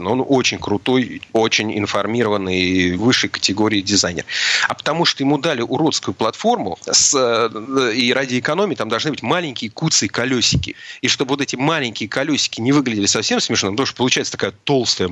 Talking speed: 155 wpm